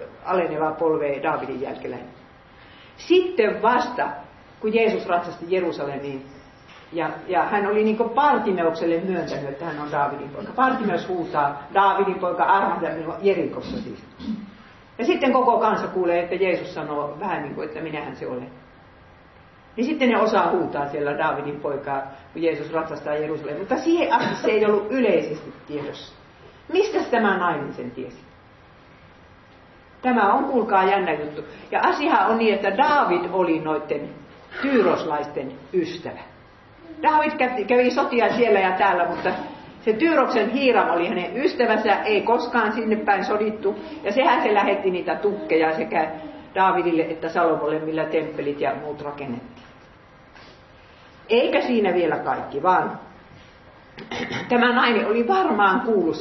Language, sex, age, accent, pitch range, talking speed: Finnish, female, 50-69, native, 155-235 Hz, 135 wpm